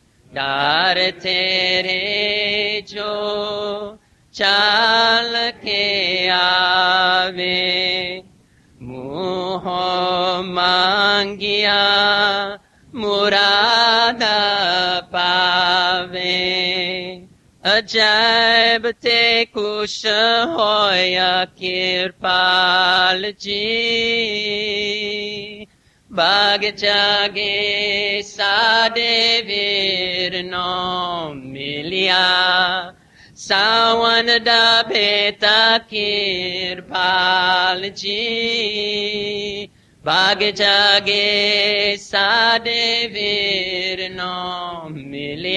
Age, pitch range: 30-49, 185-210 Hz